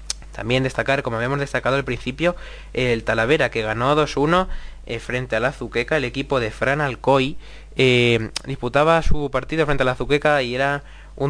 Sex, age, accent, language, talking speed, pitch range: male, 20-39, Spanish, Spanish, 175 wpm, 115-150 Hz